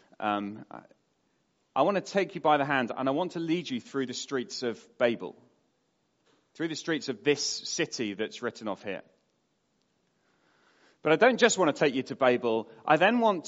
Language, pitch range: English, 130-175 Hz